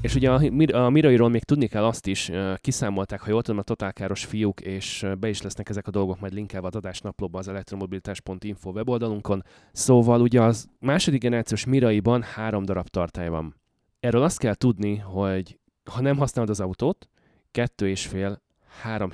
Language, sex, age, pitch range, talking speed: Hungarian, male, 20-39, 95-120 Hz, 170 wpm